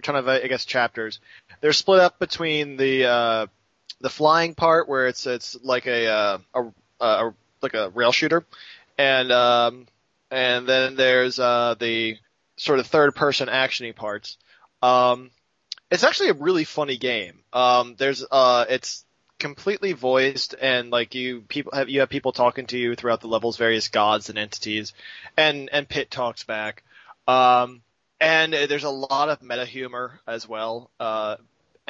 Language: English